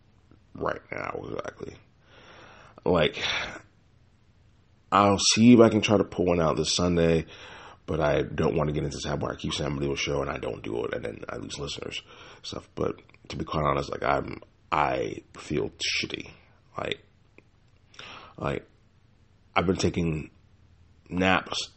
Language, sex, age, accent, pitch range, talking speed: English, male, 30-49, American, 85-110 Hz, 155 wpm